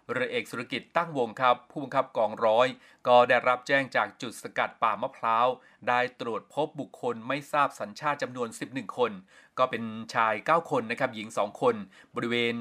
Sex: male